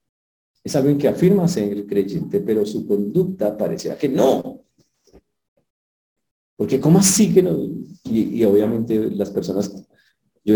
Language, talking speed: Spanish, 135 wpm